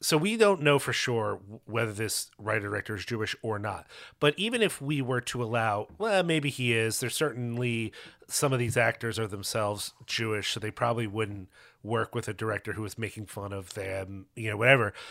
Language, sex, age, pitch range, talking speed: English, male, 30-49, 115-160 Hz, 200 wpm